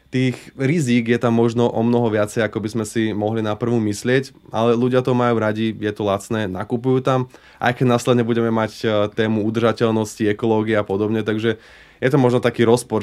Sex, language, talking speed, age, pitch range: male, Slovak, 195 wpm, 20-39, 105-115 Hz